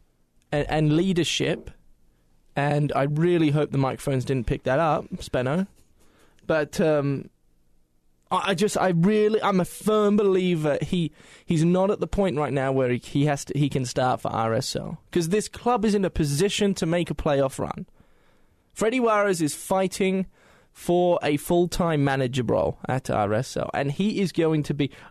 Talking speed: 170 wpm